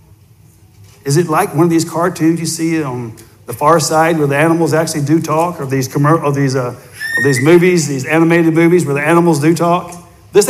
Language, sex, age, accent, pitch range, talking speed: English, male, 60-79, American, 135-175 Hz, 205 wpm